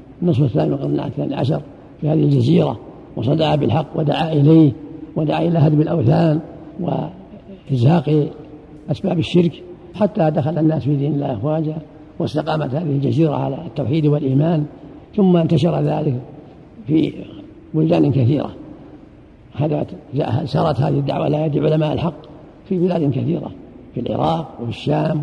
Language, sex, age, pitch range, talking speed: Arabic, male, 60-79, 135-160 Hz, 120 wpm